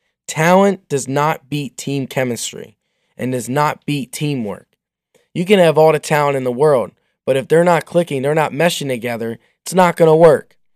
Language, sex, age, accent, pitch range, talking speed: English, male, 10-29, American, 140-170 Hz, 190 wpm